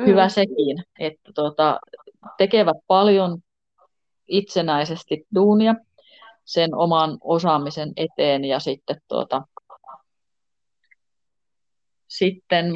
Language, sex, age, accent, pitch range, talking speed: Finnish, female, 30-49, native, 155-200 Hz, 75 wpm